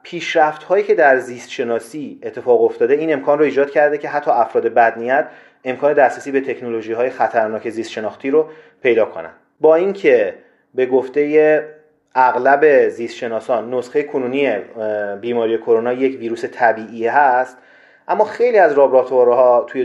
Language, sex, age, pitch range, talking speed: Persian, male, 30-49, 120-170 Hz, 130 wpm